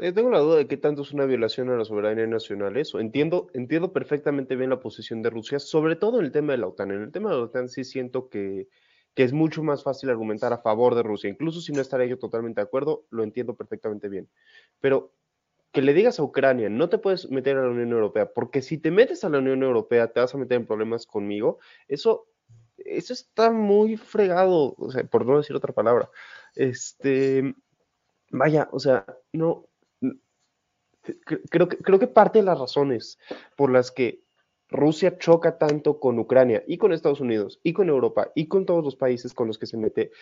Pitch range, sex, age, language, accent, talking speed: 125-185 Hz, male, 20-39, Spanish, Mexican, 205 wpm